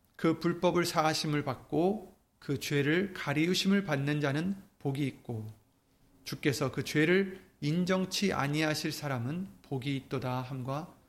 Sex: male